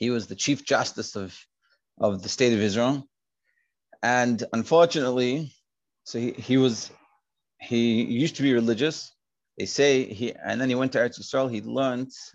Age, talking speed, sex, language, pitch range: 30-49, 165 wpm, male, English, 105-130 Hz